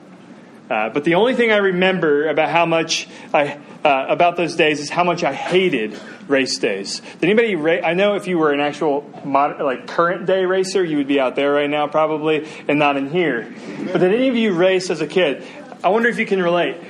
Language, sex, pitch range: English, male, 165-215 Hz